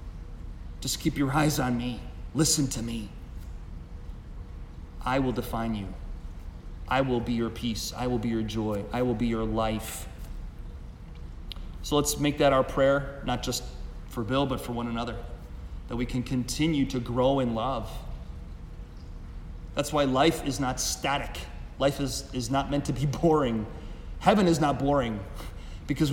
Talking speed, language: 160 wpm, English